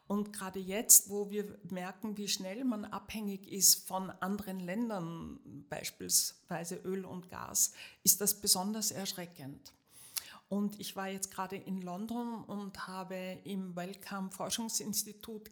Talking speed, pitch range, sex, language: 130 wpm, 185-210 Hz, female, German